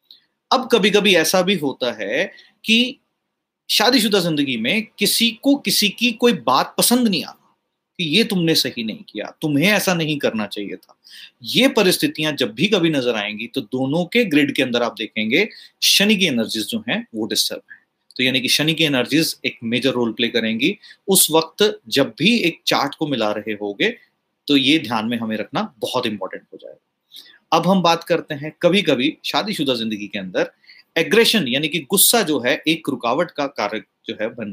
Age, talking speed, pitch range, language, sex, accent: 30-49, 195 wpm, 130-200 Hz, Hindi, male, native